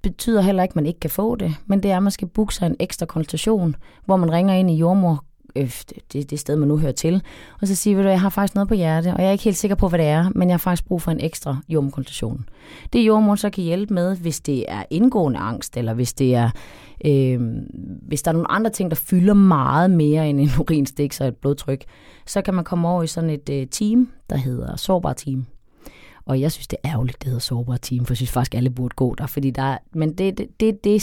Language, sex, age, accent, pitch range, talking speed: Danish, female, 30-49, native, 140-180 Hz, 265 wpm